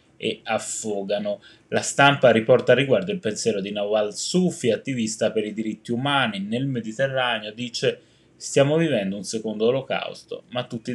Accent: native